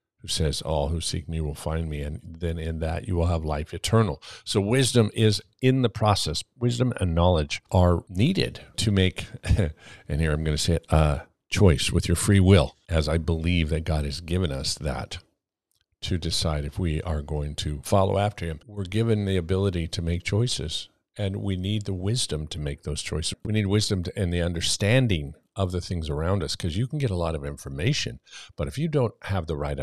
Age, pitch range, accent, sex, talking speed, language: 50-69, 75-100 Hz, American, male, 215 wpm, English